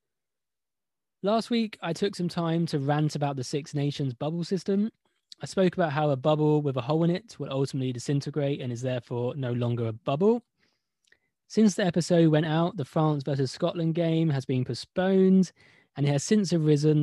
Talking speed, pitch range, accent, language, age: 185 wpm, 130-175 Hz, British, English, 20-39